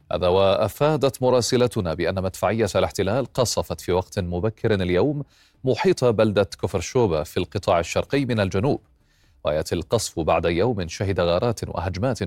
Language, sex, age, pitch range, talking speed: Arabic, male, 30-49, 90-110 Hz, 125 wpm